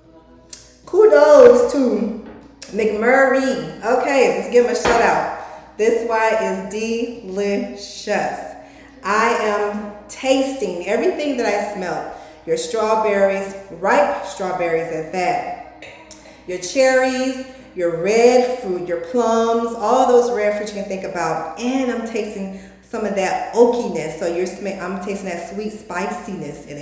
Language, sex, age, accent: English, female, 30-49, American